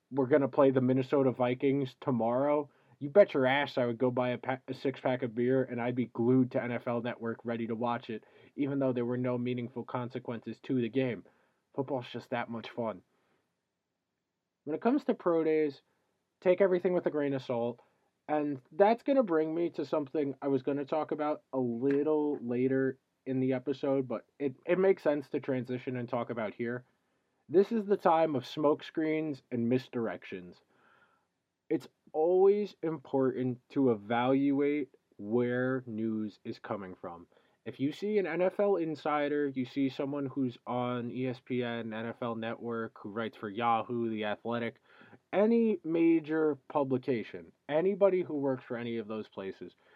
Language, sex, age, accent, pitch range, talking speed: English, male, 20-39, American, 120-150 Hz, 170 wpm